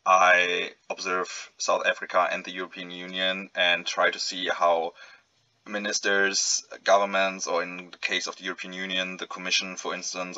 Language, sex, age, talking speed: English, male, 20-39, 155 wpm